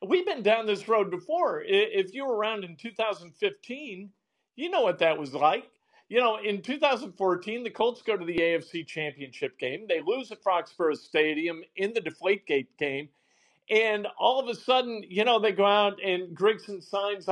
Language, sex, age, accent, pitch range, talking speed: English, male, 50-69, American, 200-275 Hz, 185 wpm